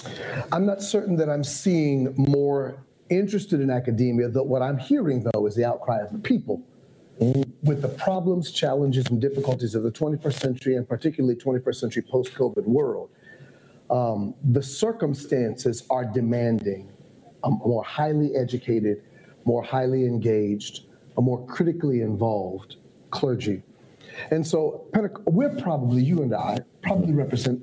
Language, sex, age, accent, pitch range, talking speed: English, male, 40-59, American, 120-150 Hz, 135 wpm